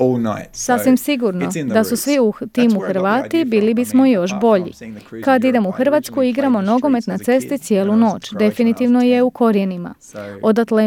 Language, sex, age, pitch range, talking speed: Croatian, female, 30-49, 205-255 Hz, 150 wpm